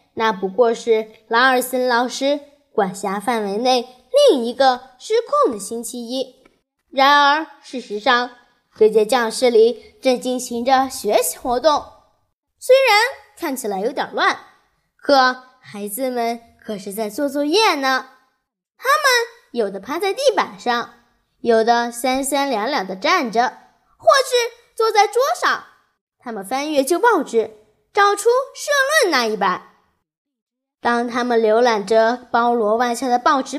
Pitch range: 235-350 Hz